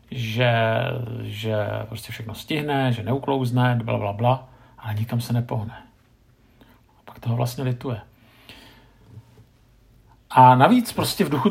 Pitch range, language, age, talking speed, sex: 115-135 Hz, Czech, 50-69, 110 wpm, male